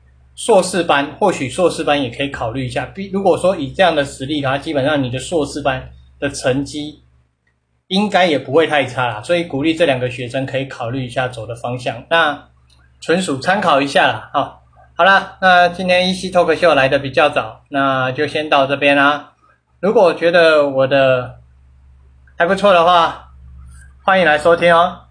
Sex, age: male, 20-39